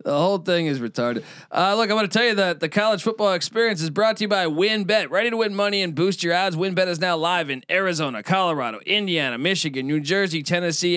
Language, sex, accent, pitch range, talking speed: English, male, American, 135-185 Hz, 235 wpm